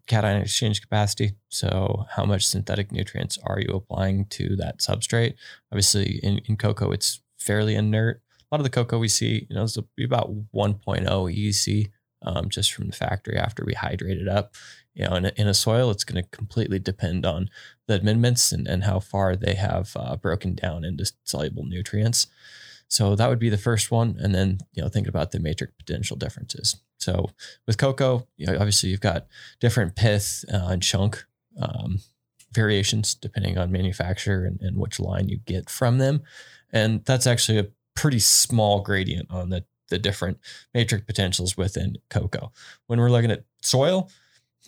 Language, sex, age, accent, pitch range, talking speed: English, male, 20-39, American, 95-120 Hz, 180 wpm